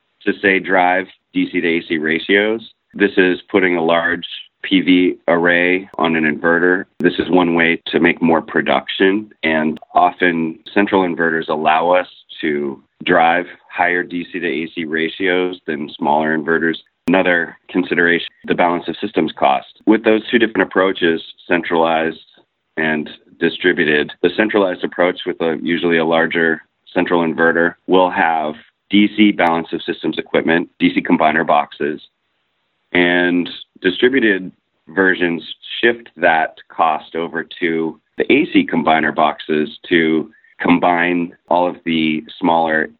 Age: 30-49